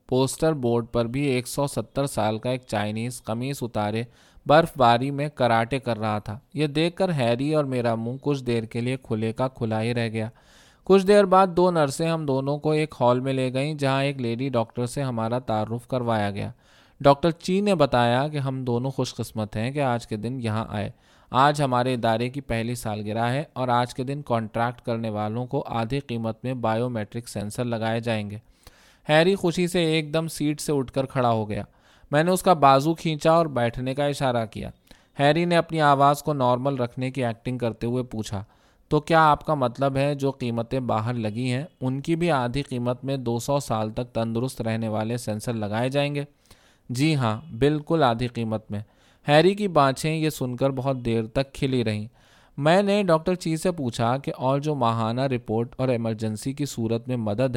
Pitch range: 115-145 Hz